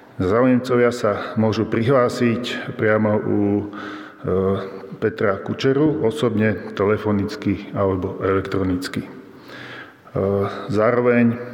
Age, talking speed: 40-59, 70 wpm